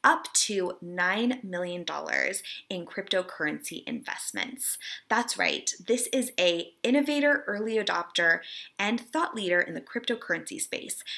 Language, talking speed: English, 120 wpm